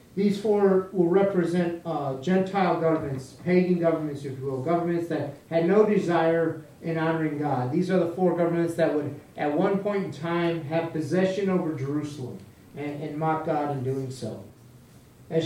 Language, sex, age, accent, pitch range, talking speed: English, male, 40-59, American, 140-185 Hz, 170 wpm